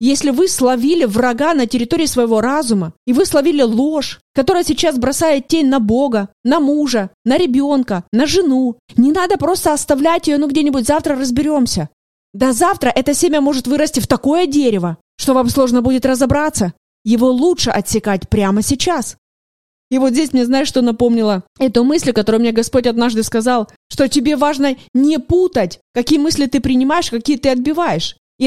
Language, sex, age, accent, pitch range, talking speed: Russian, female, 20-39, native, 245-315 Hz, 165 wpm